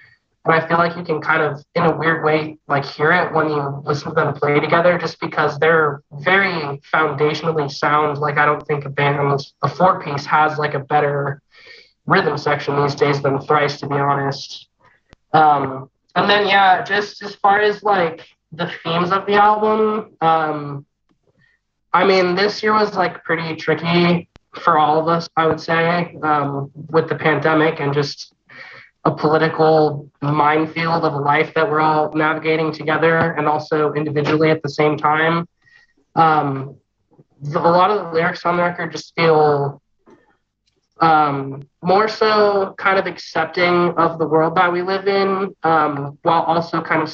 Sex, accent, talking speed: male, American, 170 wpm